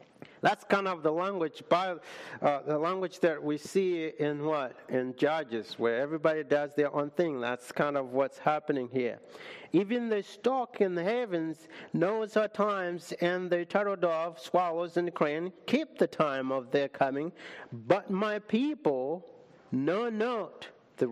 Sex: male